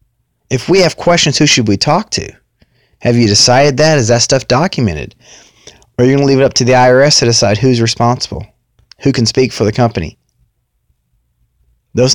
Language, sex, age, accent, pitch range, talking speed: English, male, 30-49, American, 115-140 Hz, 195 wpm